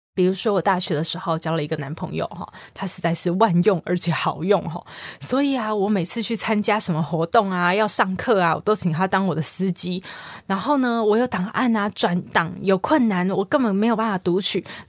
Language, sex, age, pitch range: Chinese, female, 20-39, 180-250 Hz